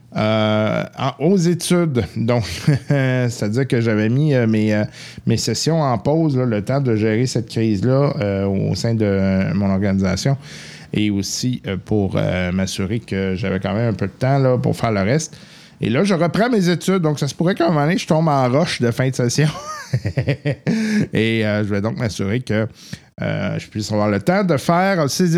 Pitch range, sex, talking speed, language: 100-135 Hz, male, 205 wpm, French